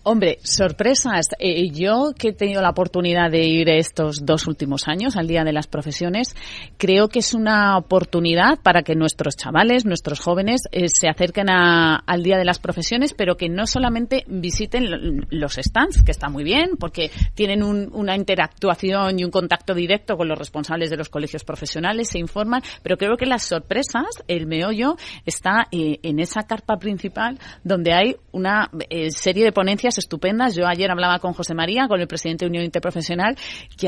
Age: 30-49